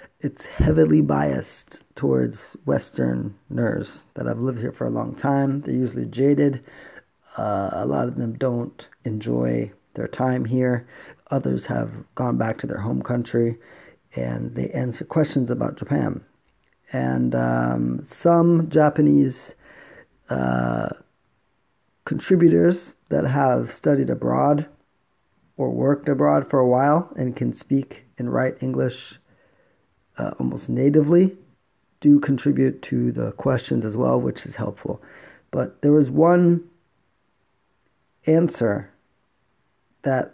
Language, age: English, 30-49